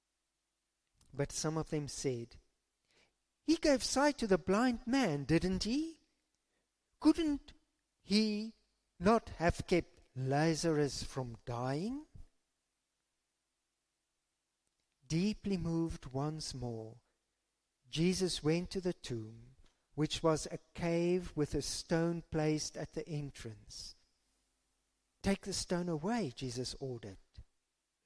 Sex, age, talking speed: male, 50-69, 105 wpm